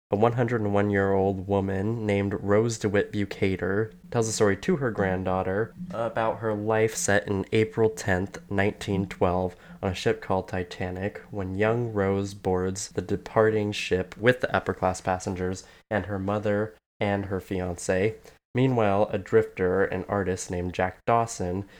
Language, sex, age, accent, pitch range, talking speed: English, male, 20-39, American, 95-110 Hz, 140 wpm